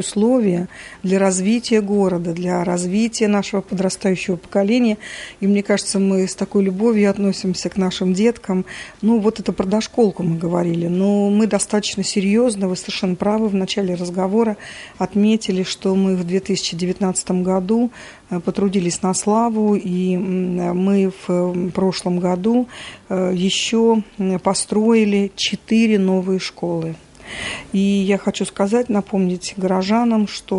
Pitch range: 185-210 Hz